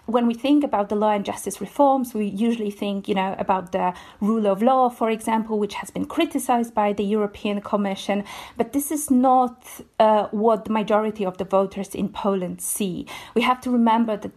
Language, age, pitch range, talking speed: English, 40-59, 205-230 Hz, 200 wpm